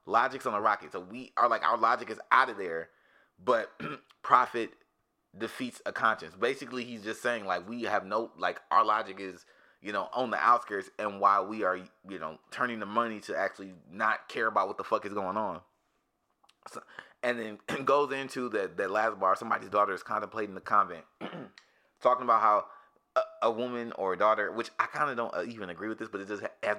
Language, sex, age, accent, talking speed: English, male, 30-49, American, 205 wpm